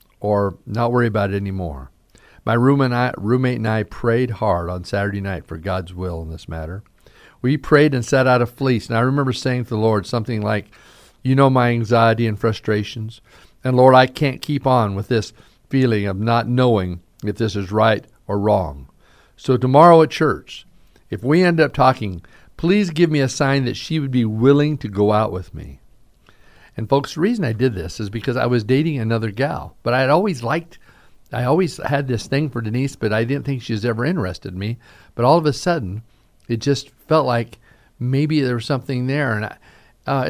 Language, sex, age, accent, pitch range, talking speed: English, male, 50-69, American, 105-140 Hz, 210 wpm